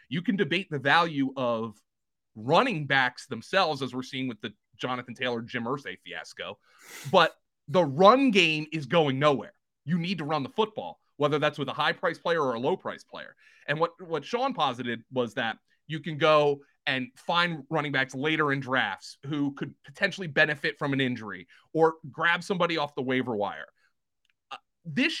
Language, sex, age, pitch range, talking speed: English, male, 30-49, 130-170 Hz, 180 wpm